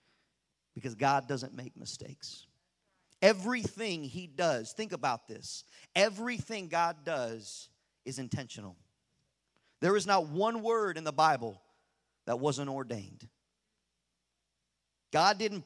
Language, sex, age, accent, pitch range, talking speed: English, male, 40-59, American, 120-190 Hz, 110 wpm